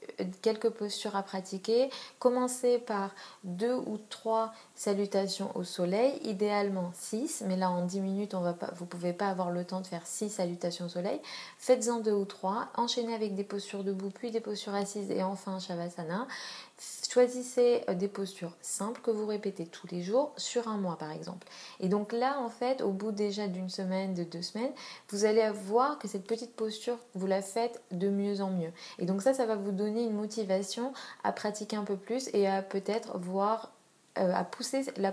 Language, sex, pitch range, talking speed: French, female, 185-225 Hz, 195 wpm